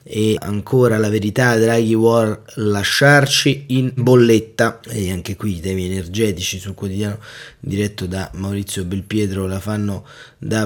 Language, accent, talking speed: Italian, native, 135 wpm